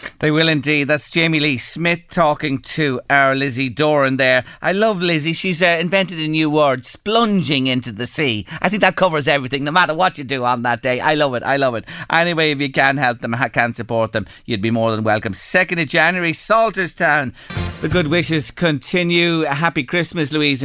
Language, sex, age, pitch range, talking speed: English, male, 40-59, 120-160 Hz, 205 wpm